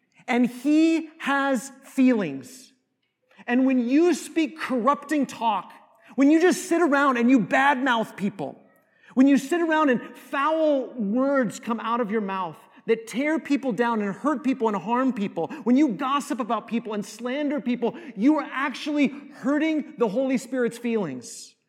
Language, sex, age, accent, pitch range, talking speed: English, male, 30-49, American, 235-290 Hz, 160 wpm